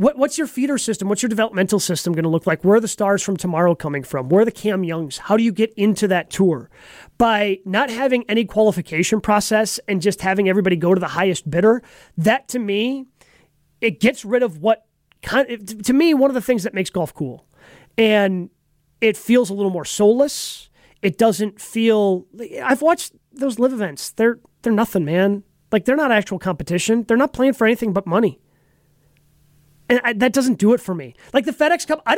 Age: 30-49